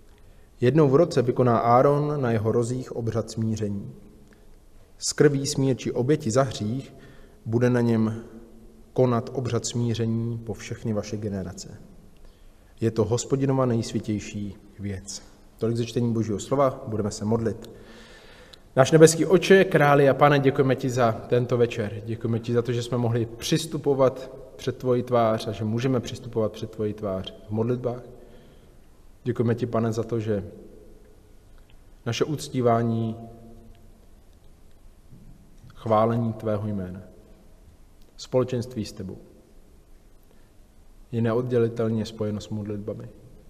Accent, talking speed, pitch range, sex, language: native, 120 wpm, 105-125 Hz, male, Czech